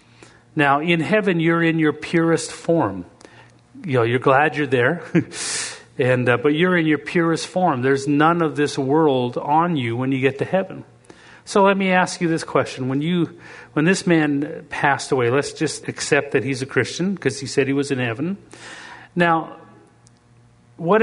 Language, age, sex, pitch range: English, 40-59, male, 135-165 Hz